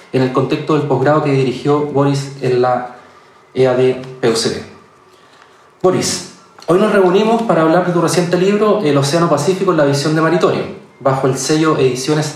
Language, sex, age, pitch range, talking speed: Spanish, male, 30-49, 140-185 Hz, 160 wpm